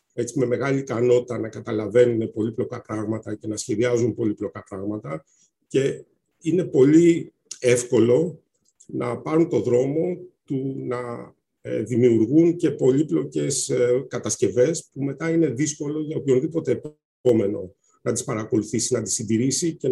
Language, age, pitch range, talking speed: Greek, 50-69, 115-150 Hz, 130 wpm